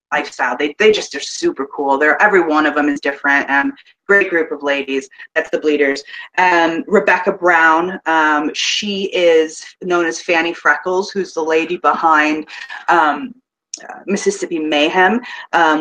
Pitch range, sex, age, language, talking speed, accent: 150-185 Hz, female, 30-49, English, 155 wpm, American